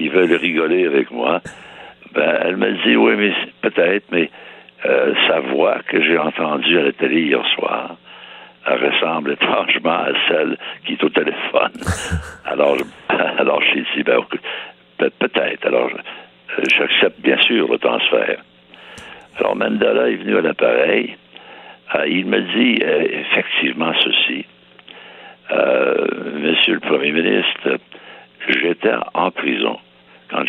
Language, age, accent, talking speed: French, 60-79, French, 135 wpm